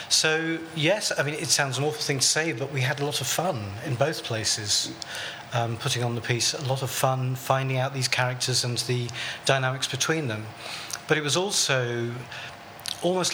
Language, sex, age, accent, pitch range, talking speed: English, male, 40-59, British, 115-140 Hz, 200 wpm